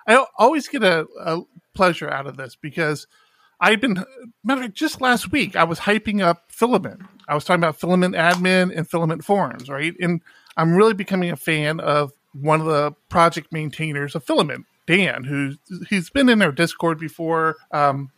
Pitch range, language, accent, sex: 145-185 Hz, English, American, male